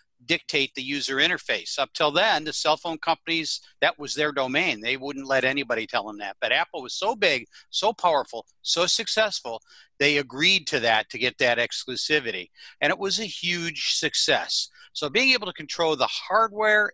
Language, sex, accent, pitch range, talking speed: English, male, American, 130-175 Hz, 185 wpm